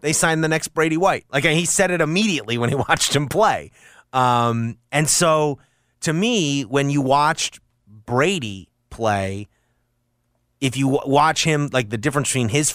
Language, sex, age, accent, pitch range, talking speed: English, male, 30-49, American, 110-140 Hz, 175 wpm